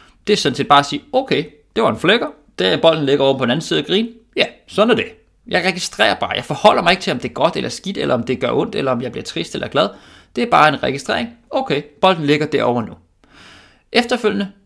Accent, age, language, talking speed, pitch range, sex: native, 20-39, Danish, 260 wpm, 135-210 Hz, male